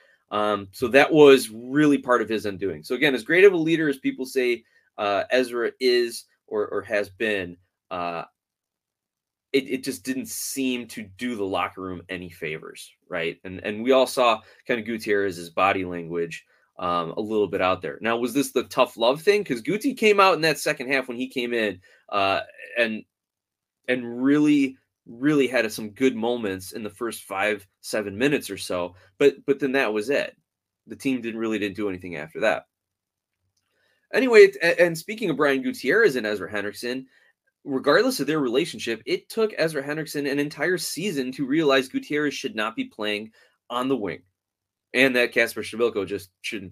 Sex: male